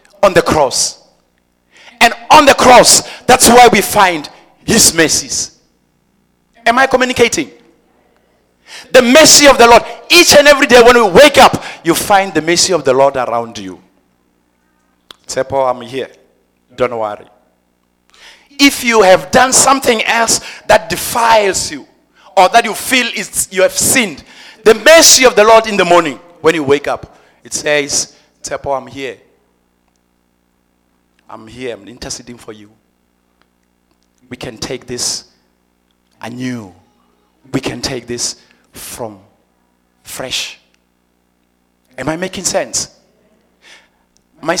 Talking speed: 135 wpm